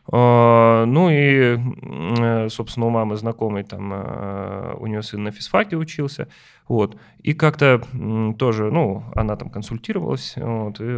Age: 20-39